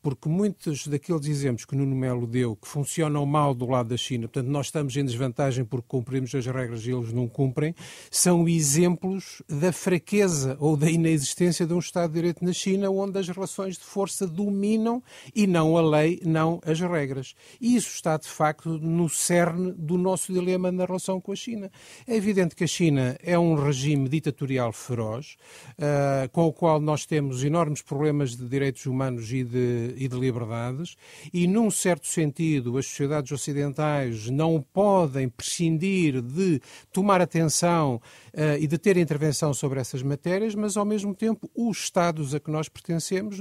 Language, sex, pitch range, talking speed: Portuguese, male, 140-190 Hz, 175 wpm